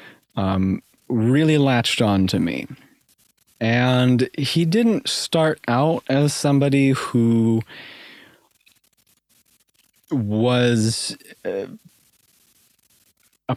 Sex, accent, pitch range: male, American, 115-140 Hz